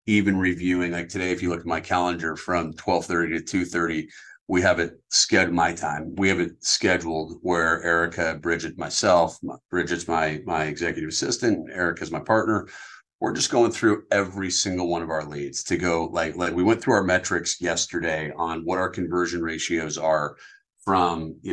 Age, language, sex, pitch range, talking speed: 40-59, English, male, 85-105 Hz, 180 wpm